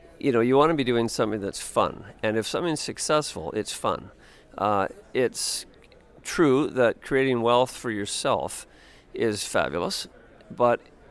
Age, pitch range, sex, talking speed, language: 50-69, 115-155 Hz, male, 145 wpm, English